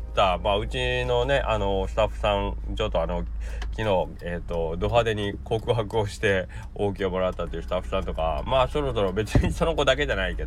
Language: Japanese